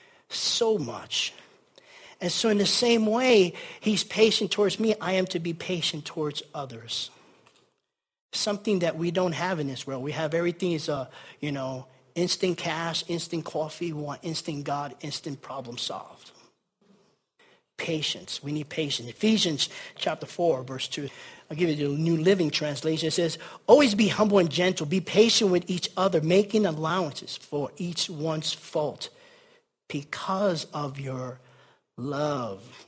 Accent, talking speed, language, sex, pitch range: American, 150 wpm, English, male, 160-215 Hz